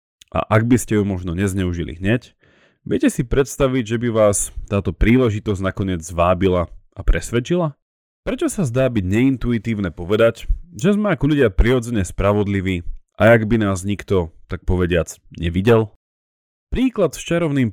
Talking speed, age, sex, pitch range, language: 145 wpm, 30-49, male, 85-120 Hz, Slovak